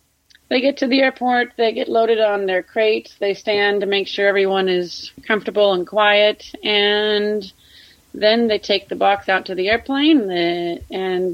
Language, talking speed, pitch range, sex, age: English, 170 wpm, 185-225 Hz, female, 30-49